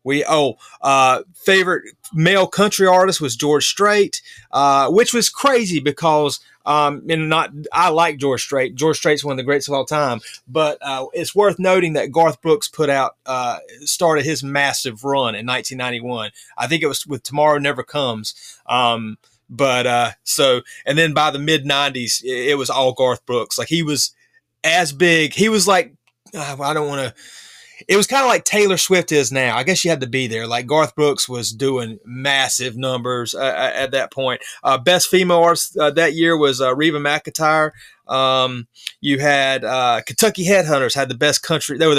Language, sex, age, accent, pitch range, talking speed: English, male, 30-49, American, 130-170 Hz, 195 wpm